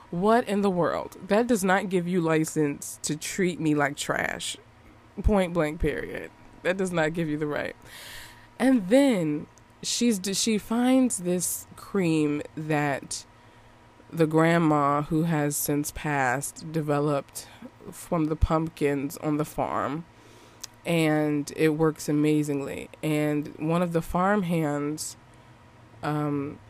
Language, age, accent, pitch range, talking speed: English, 20-39, American, 150-220 Hz, 130 wpm